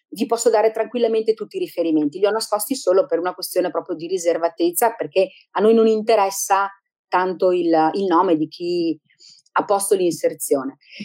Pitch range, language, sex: 190-295 Hz, Italian, female